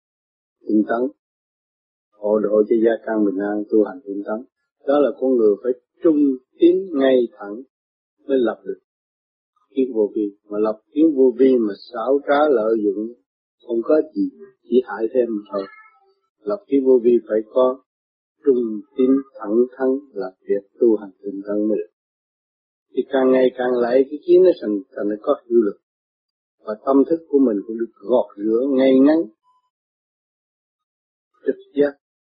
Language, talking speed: Vietnamese, 160 wpm